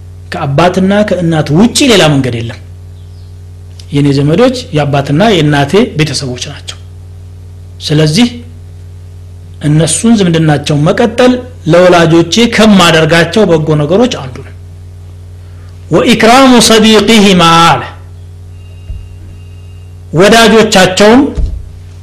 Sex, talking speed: male, 75 wpm